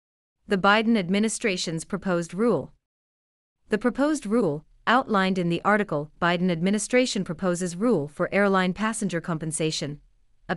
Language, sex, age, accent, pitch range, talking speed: English, female, 40-59, American, 160-210 Hz, 120 wpm